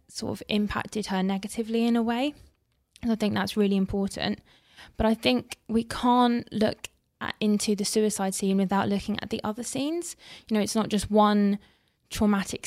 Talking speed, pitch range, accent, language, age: 175 wpm, 195-230 Hz, British, English, 20-39